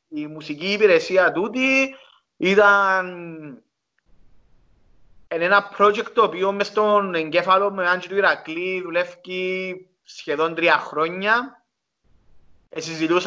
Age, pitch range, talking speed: 30-49, 165-205 Hz, 85 wpm